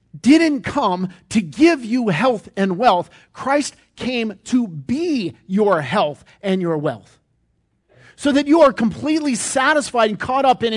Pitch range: 195-275 Hz